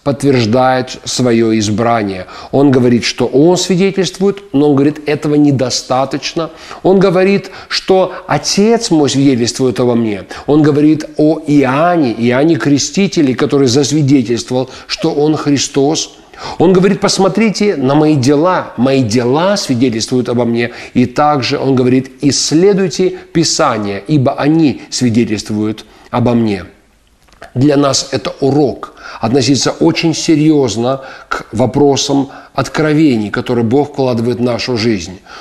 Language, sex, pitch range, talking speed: Russian, male, 130-165 Hz, 115 wpm